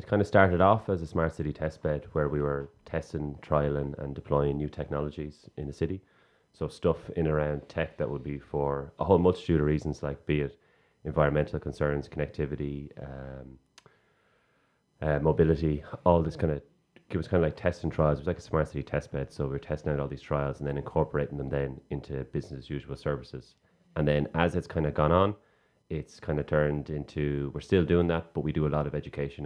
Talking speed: 220 wpm